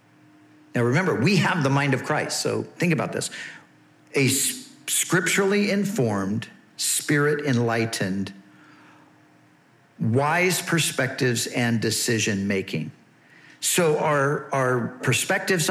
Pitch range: 115-150 Hz